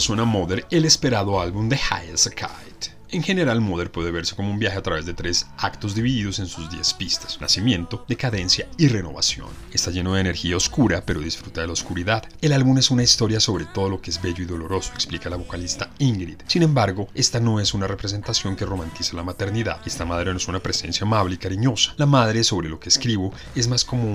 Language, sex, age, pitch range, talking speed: Spanish, male, 30-49, 90-115 Hz, 220 wpm